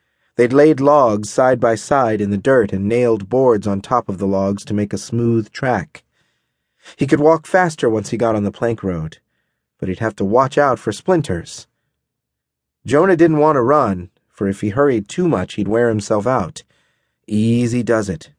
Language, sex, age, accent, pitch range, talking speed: English, male, 30-49, American, 105-145 Hz, 195 wpm